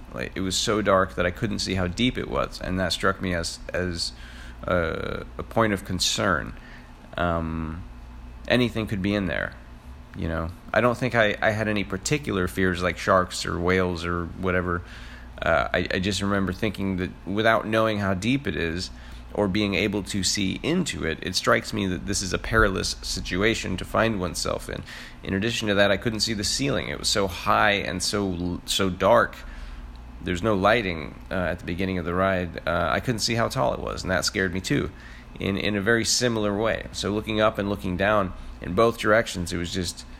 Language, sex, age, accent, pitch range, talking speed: English, male, 30-49, American, 65-100 Hz, 205 wpm